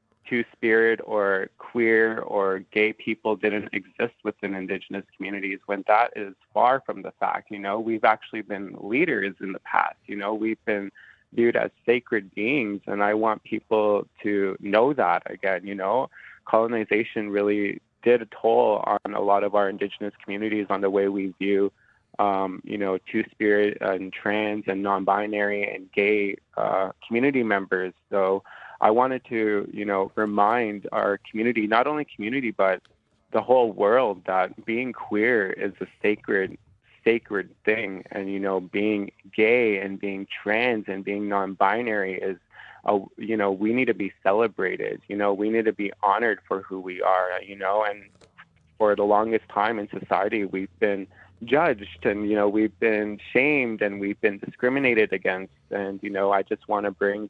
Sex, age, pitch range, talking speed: male, 20-39, 100-110 Hz, 170 wpm